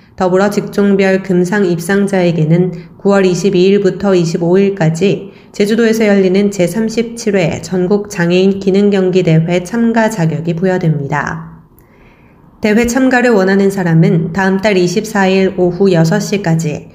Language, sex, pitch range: Korean, female, 175-215 Hz